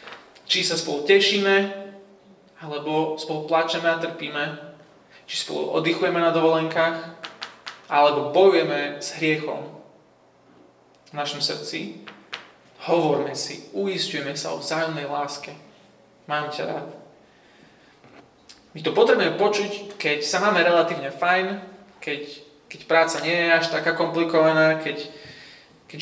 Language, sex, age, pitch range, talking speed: Slovak, male, 20-39, 150-175 Hz, 115 wpm